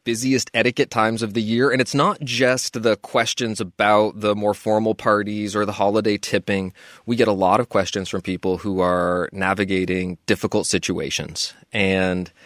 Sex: male